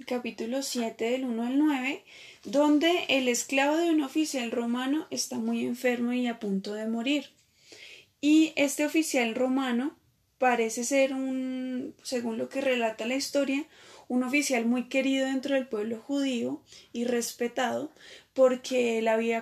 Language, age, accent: Spanish, 20-39, Colombian